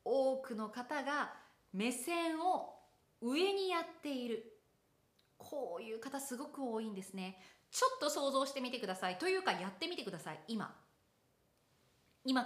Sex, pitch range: female, 205-280 Hz